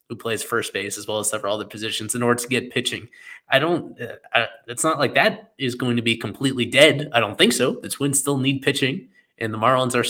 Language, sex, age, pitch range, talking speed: English, male, 20-39, 115-140 Hz, 255 wpm